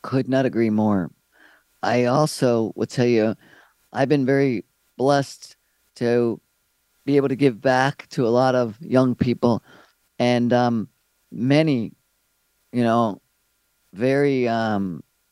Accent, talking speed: American, 125 wpm